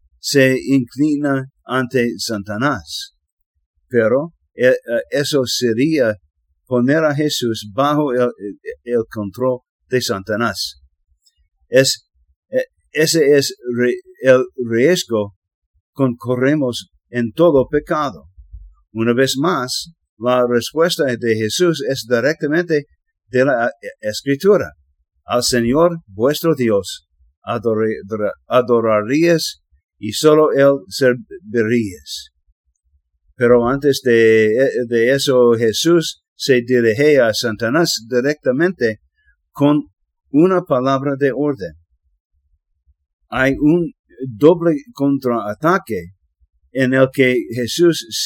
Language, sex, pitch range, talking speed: English, male, 95-140 Hz, 90 wpm